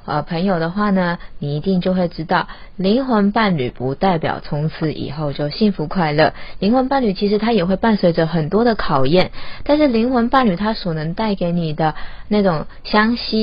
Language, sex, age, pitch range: Chinese, female, 20-39, 155-210 Hz